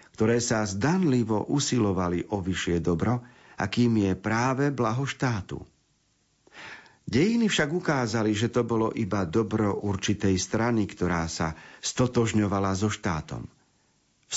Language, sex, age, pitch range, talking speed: Slovak, male, 50-69, 95-120 Hz, 115 wpm